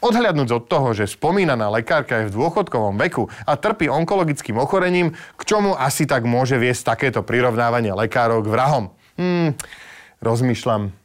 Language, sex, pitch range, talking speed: Slovak, male, 120-170 Hz, 145 wpm